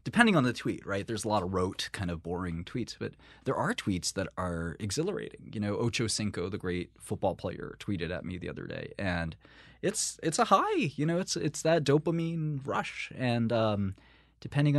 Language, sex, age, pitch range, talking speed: English, male, 20-39, 90-115 Hz, 205 wpm